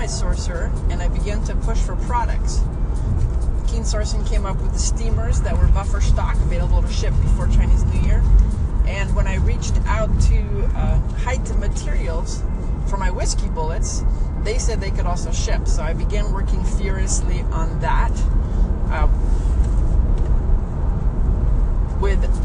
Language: English